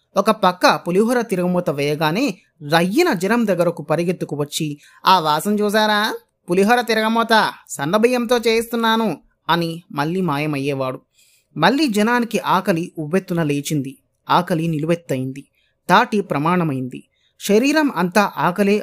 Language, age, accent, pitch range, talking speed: Telugu, 30-49, native, 155-230 Hz, 100 wpm